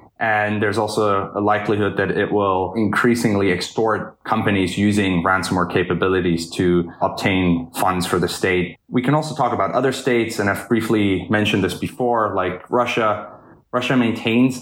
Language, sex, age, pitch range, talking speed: English, male, 20-39, 95-115 Hz, 150 wpm